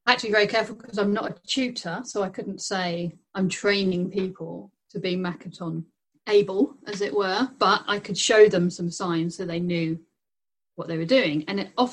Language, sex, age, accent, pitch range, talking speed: English, female, 40-59, British, 170-205 Hz, 190 wpm